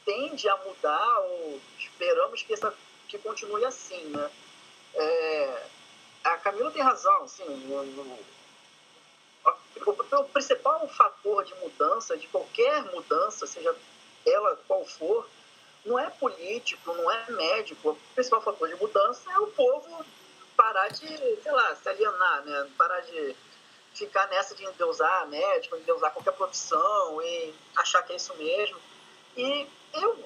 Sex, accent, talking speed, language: male, Brazilian, 145 wpm, English